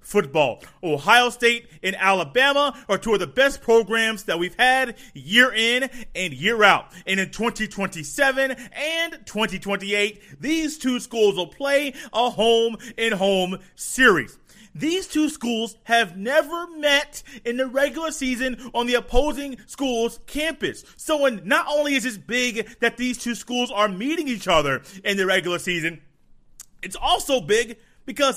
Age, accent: 30-49, American